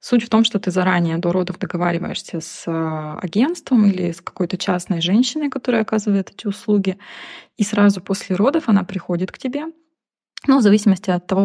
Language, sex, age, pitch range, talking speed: Russian, female, 20-39, 175-205 Hz, 175 wpm